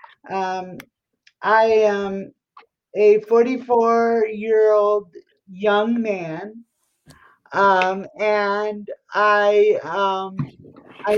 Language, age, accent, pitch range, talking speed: English, 50-69, American, 185-225 Hz, 75 wpm